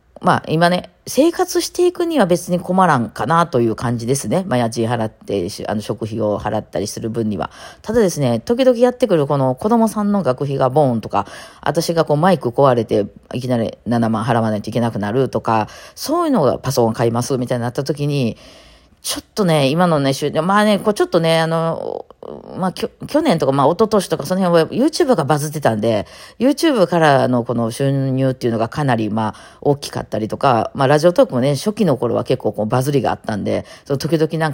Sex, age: female, 40-59